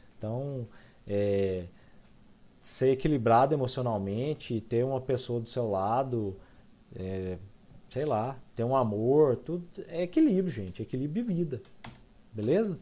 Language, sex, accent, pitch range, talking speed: Portuguese, male, Brazilian, 120-180 Hz, 120 wpm